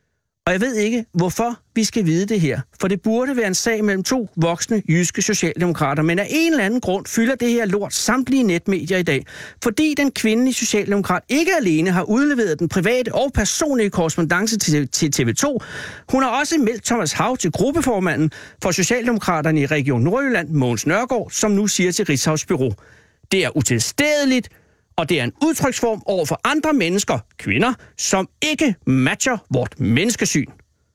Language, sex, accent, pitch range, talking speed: Danish, male, native, 160-240 Hz, 175 wpm